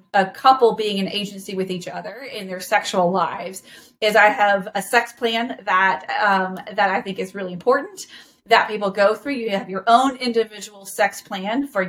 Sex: female